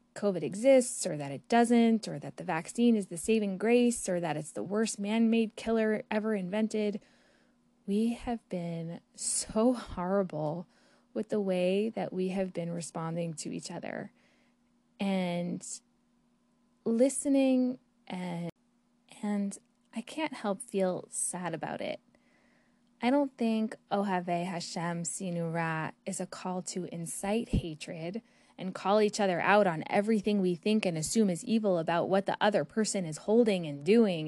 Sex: female